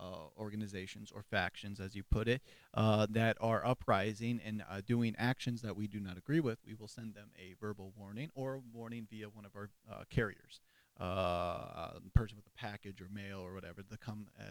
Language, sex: English, male